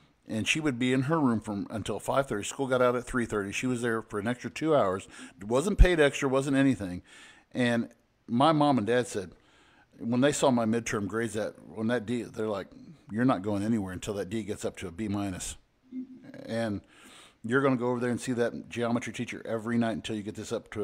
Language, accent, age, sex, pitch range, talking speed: English, American, 50-69, male, 110-130 Hz, 230 wpm